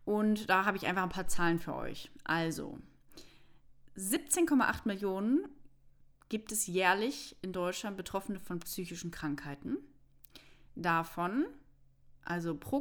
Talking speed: 115 wpm